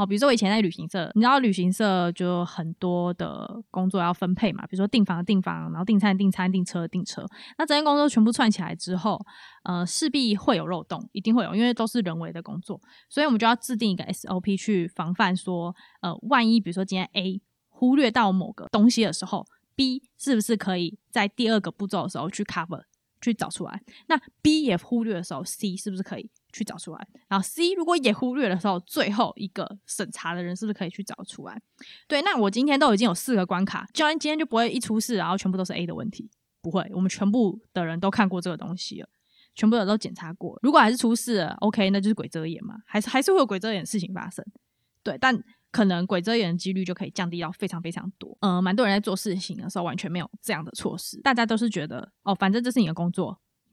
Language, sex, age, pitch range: Chinese, female, 20-39, 185-230 Hz